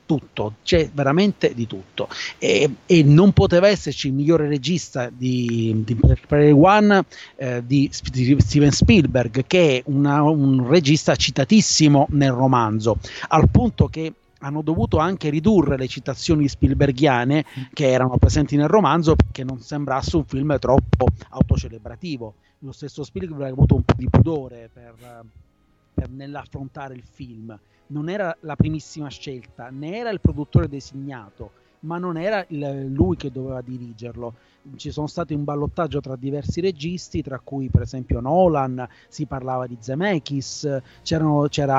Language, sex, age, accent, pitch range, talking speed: Italian, male, 30-49, native, 125-155 Hz, 145 wpm